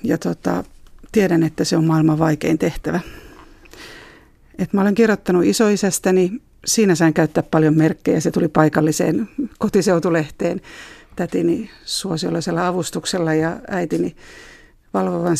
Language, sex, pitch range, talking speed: Finnish, female, 160-185 Hz, 115 wpm